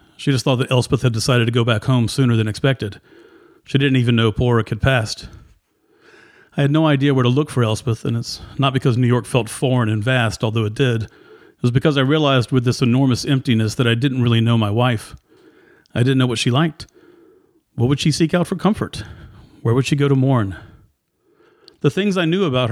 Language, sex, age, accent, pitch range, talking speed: English, male, 40-59, American, 115-140 Hz, 220 wpm